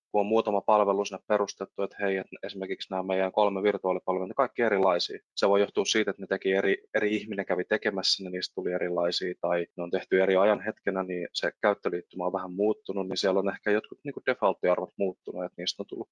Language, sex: Finnish, male